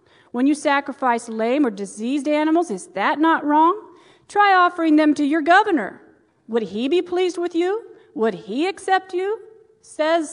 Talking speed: 165 wpm